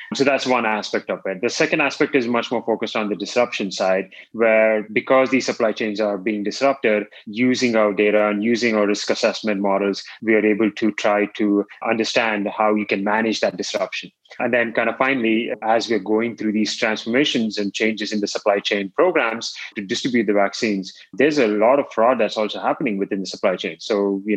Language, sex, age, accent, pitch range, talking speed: English, male, 20-39, Indian, 100-115 Hz, 205 wpm